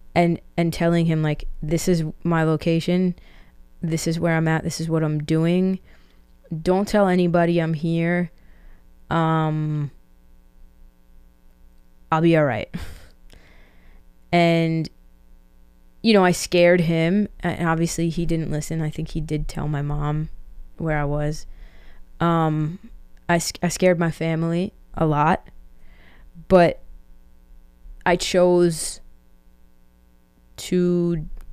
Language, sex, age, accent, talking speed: English, female, 20-39, American, 120 wpm